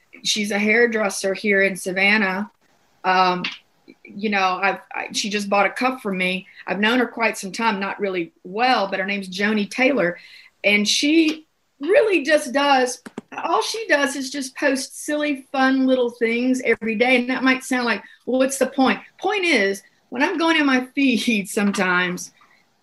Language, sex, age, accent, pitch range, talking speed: English, female, 40-59, American, 205-280 Hz, 175 wpm